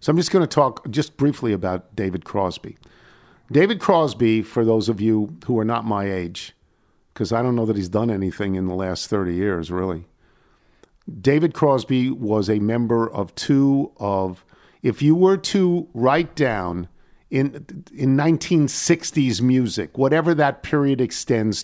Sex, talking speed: male, 160 wpm